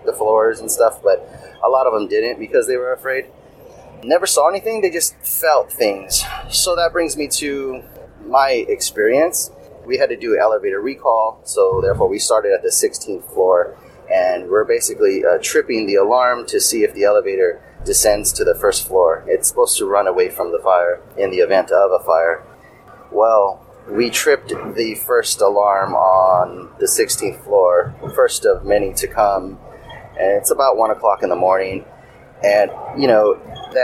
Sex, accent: male, American